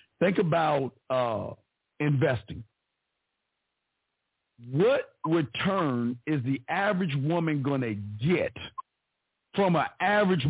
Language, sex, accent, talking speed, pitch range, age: English, male, American, 90 wpm, 170-245 Hz, 50-69